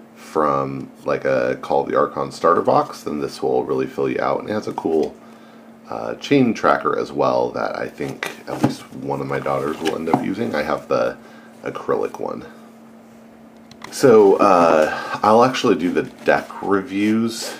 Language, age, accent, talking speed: English, 30-49, American, 175 wpm